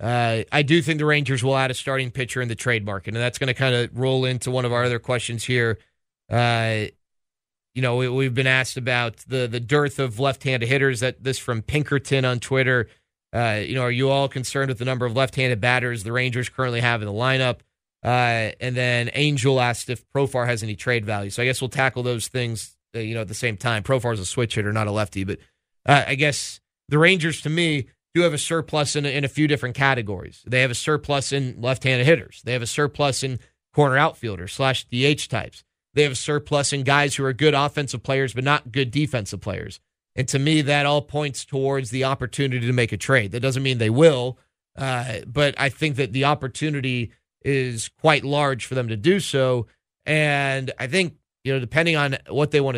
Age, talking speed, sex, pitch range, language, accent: 30-49, 225 wpm, male, 120-140 Hz, English, American